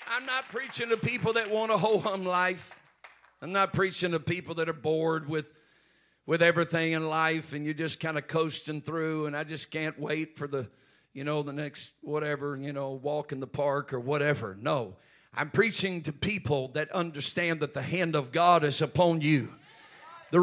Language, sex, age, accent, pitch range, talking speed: English, male, 50-69, American, 160-230 Hz, 195 wpm